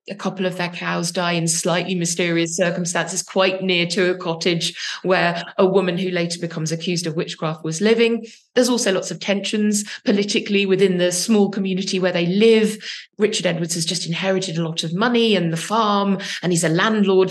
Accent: British